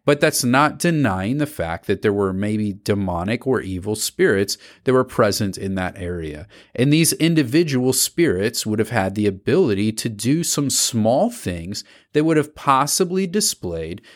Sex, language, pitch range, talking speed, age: male, English, 95-130 Hz, 165 wpm, 40-59